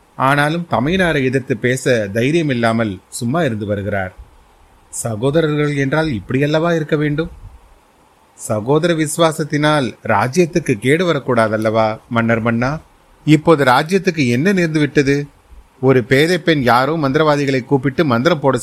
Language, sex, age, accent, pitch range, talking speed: Tamil, male, 30-49, native, 115-150 Hz, 115 wpm